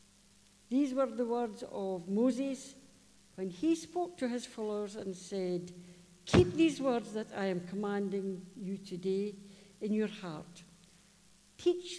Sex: female